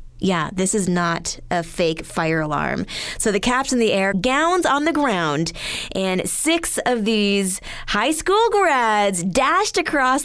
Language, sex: English, female